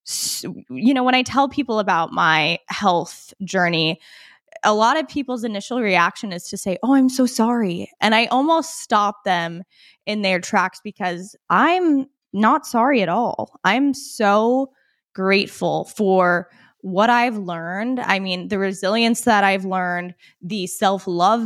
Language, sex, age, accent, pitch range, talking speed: English, female, 20-39, American, 185-240 Hz, 150 wpm